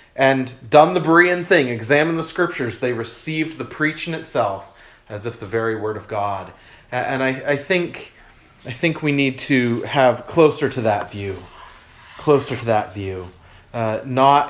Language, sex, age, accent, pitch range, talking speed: English, male, 30-49, American, 125-190 Hz, 165 wpm